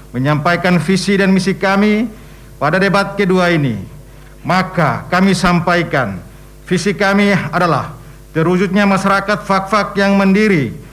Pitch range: 150-205 Hz